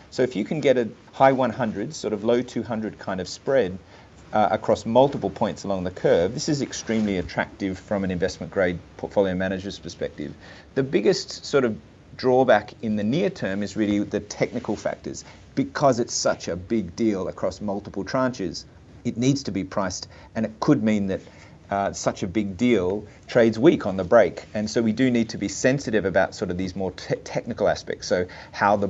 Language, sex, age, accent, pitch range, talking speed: English, male, 30-49, Australian, 95-115 Hz, 195 wpm